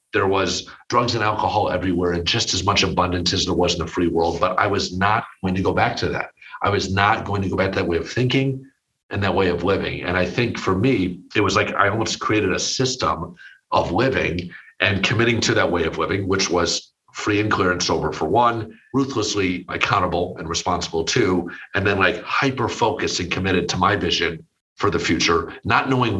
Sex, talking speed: male, 220 wpm